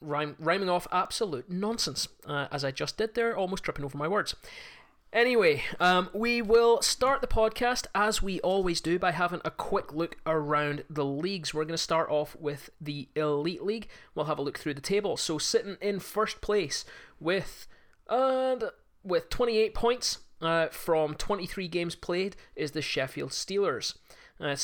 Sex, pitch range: male, 155-205 Hz